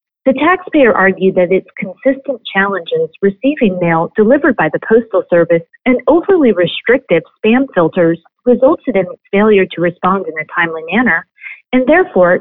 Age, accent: 40-59, American